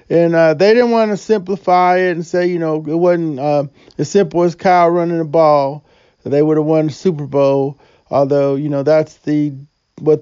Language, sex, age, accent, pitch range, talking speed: English, male, 40-59, American, 155-195 Hz, 205 wpm